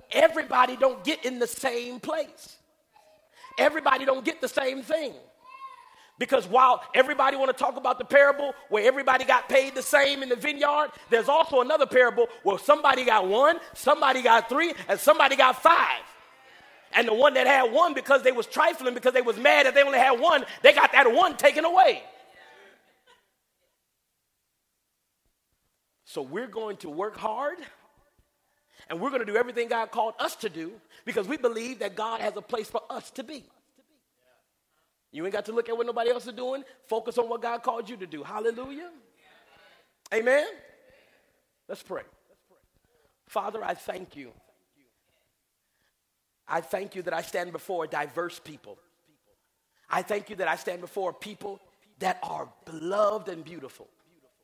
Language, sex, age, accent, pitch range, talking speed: English, male, 40-59, American, 215-285 Hz, 165 wpm